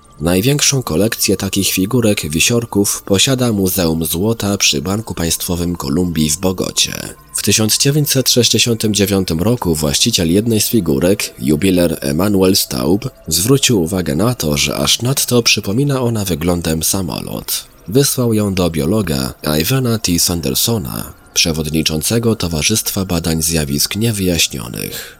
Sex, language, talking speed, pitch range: male, Polish, 110 wpm, 85-115 Hz